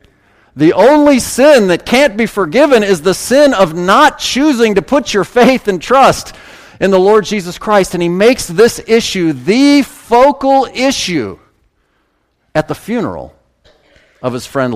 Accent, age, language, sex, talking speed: American, 40-59, English, male, 155 wpm